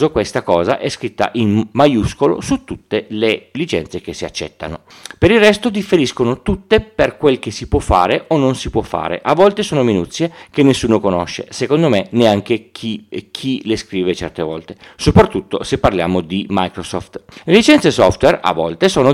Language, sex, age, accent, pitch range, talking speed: Italian, male, 40-59, native, 100-140 Hz, 175 wpm